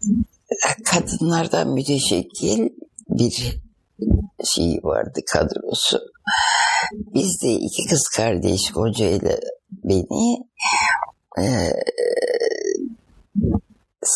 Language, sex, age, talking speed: Turkish, female, 60-79, 60 wpm